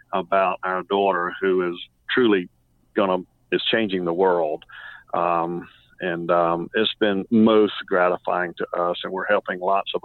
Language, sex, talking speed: English, male, 155 wpm